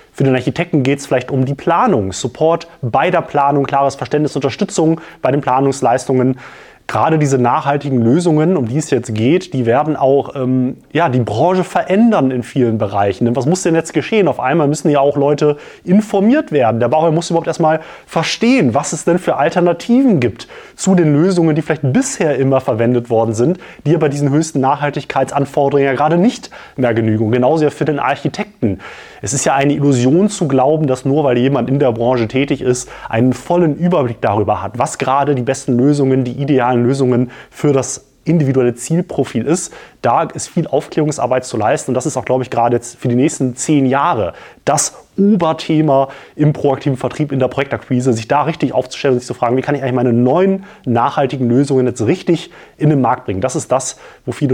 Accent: German